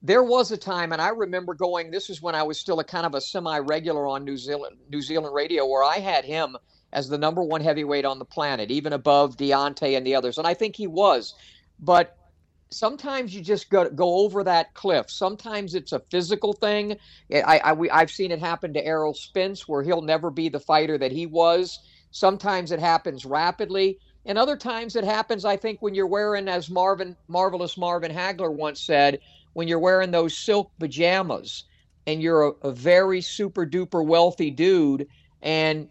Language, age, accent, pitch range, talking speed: English, 50-69, American, 150-185 Hz, 195 wpm